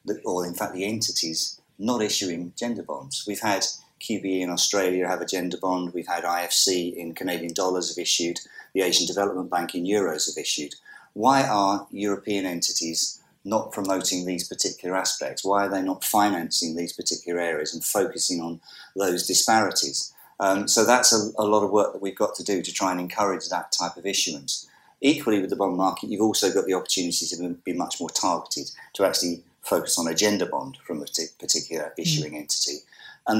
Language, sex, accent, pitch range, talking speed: English, male, British, 85-100 Hz, 190 wpm